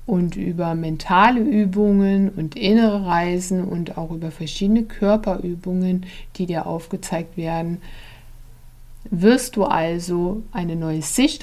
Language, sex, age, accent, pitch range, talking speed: German, female, 60-79, German, 170-210 Hz, 115 wpm